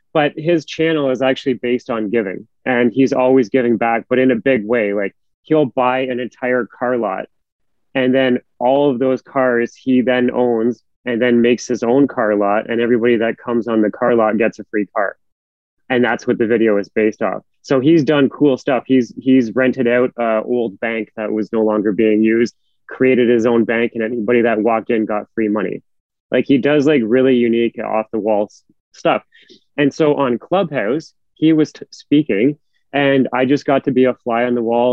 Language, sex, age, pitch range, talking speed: English, male, 30-49, 110-130 Hz, 205 wpm